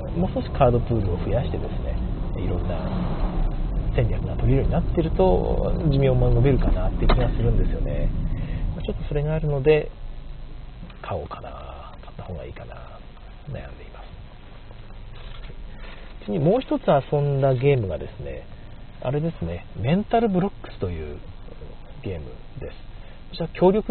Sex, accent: male, native